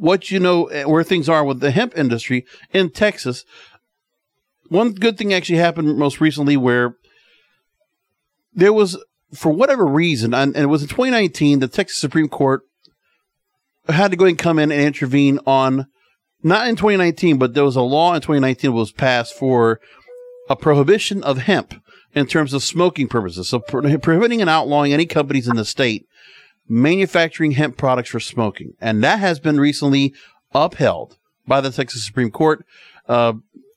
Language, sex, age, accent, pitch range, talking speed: English, male, 40-59, American, 135-175 Hz, 165 wpm